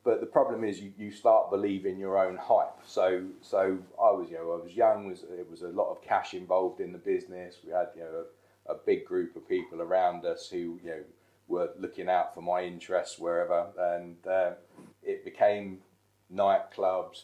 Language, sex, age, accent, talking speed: English, male, 30-49, British, 200 wpm